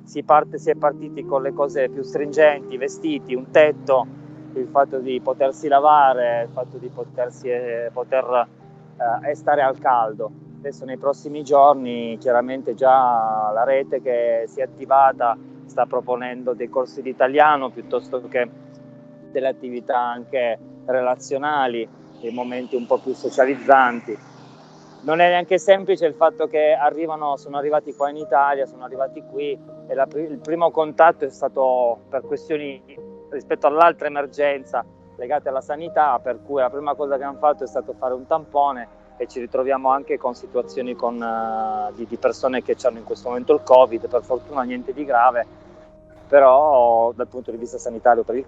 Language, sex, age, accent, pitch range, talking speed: Italian, male, 20-39, native, 125-150 Hz, 165 wpm